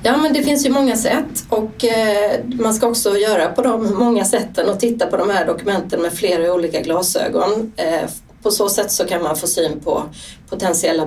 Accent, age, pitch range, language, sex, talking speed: native, 30-49, 180-235 Hz, Swedish, female, 195 wpm